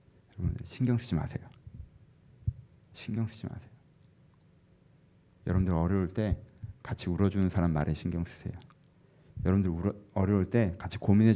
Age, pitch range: 40-59, 90-130 Hz